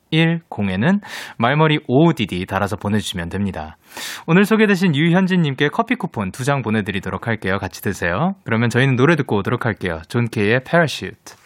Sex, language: male, Korean